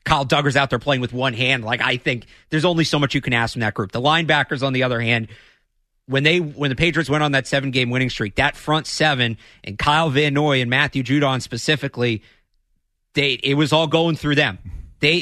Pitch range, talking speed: 125-150 Hz, 230 wpm